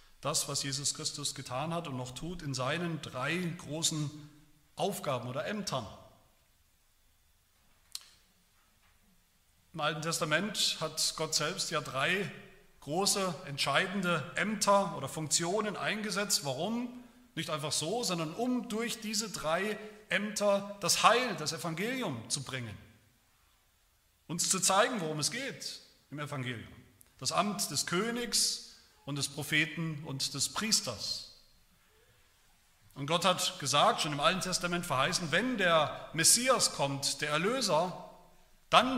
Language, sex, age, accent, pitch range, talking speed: German, male, 40-59, German, 140-190 Hz, 125 wpm